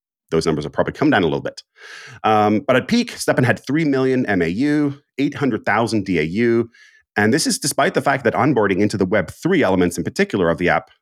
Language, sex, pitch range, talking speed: English, male, 95-135 Hz, 220 wpm